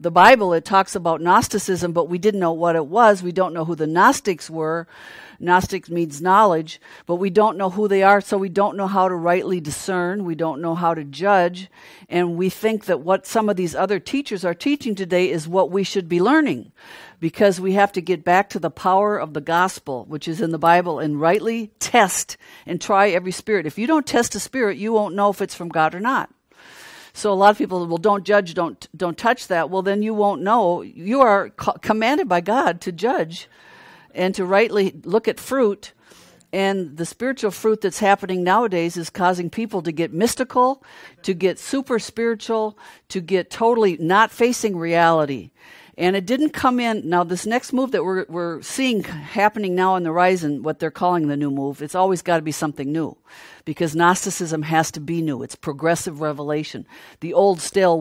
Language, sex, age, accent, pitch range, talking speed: English, female, 60-79, American, 170-210 Hz, 205 wpm